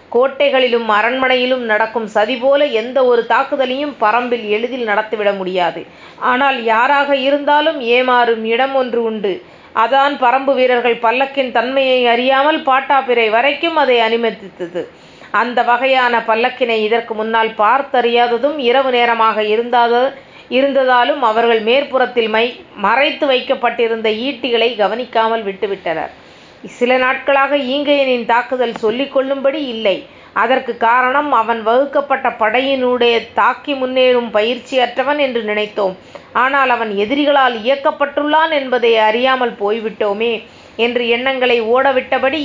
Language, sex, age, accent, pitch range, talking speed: Tamil, female, 30-49, native, 225-270 Hz, 105 wpm